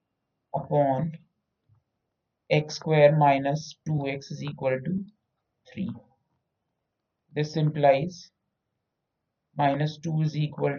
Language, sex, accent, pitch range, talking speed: Hindi, male, native, 140-170 Hz, 85 wpm